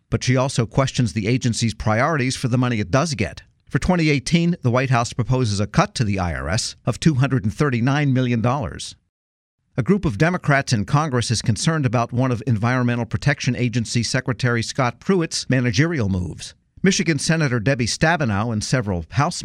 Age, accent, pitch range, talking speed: 50-69, American, 115-140 Hz, 165 wpm